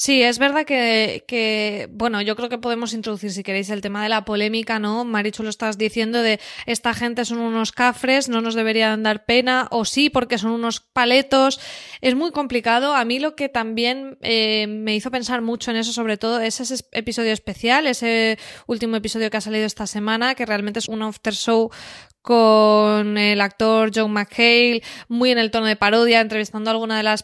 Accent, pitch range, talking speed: Spanish, 215-250 Hz, 200 wpm